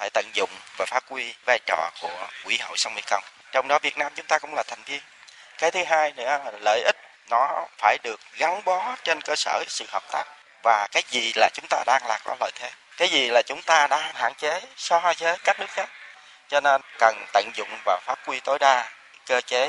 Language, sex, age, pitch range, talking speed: Vietnamese, male, 20-39, 110-155 Hz, 240 wpm